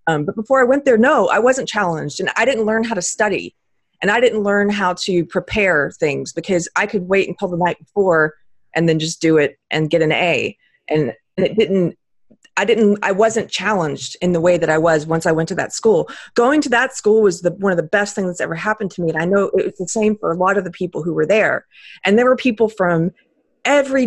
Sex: female